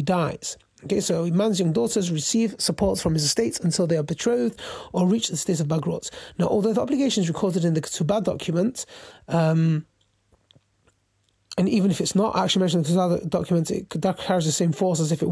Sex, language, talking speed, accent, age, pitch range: male, English, 205 wpm, British, 30-49, 165-210 Hz